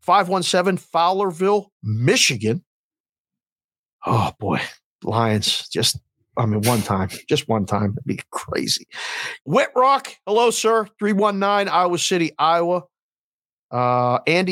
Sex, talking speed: male, 110 wpm